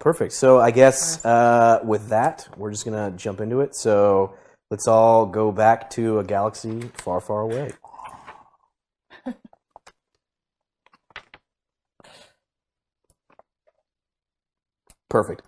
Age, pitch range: 30-49, 95-115 Hz